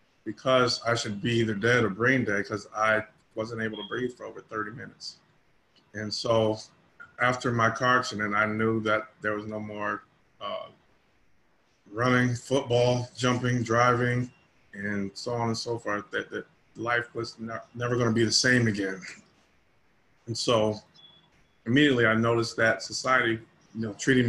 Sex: male